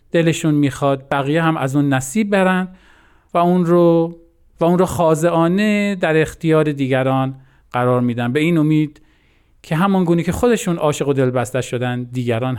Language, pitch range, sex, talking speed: Persian, 125-170 Hz, male, 150 wpm